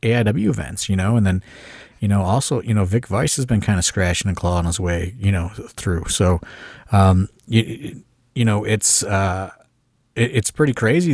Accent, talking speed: American, 170 wpm